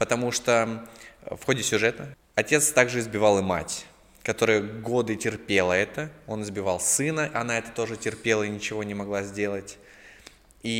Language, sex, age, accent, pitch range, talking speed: Russian, male, 20-39, native, 105-125 Hz, 150 wpm